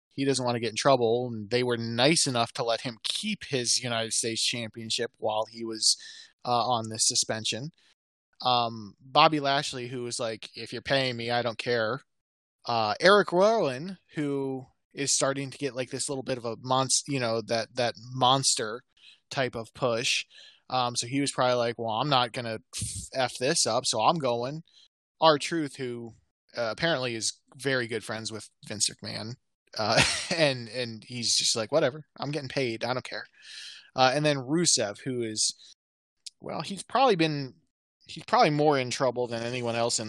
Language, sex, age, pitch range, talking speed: English, male, 20-39, 115-140 Hz, 185 wpm